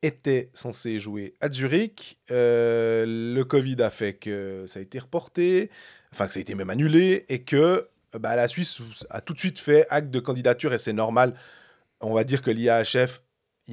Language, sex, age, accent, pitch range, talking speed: French, male, 20-39, French, 115-145 Hz, 190 wpm